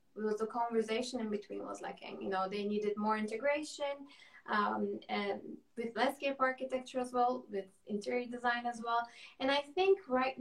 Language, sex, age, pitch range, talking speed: Turkish, female, 20-39, 205-255 Hz, 165 wpm